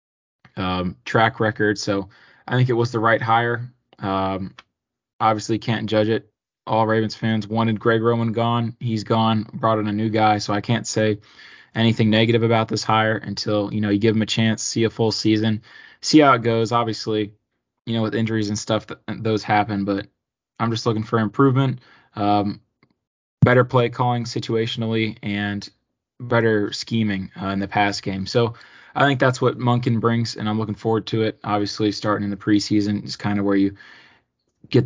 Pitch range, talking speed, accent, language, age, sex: 105-115 Hz, 185 wpm, American, English, 20-39, male